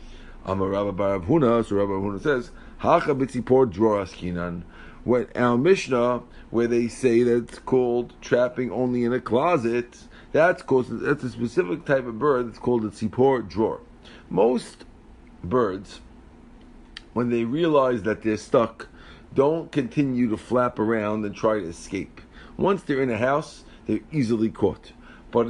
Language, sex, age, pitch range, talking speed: English, male, 50-69, 115-150 Hz, 150 wpm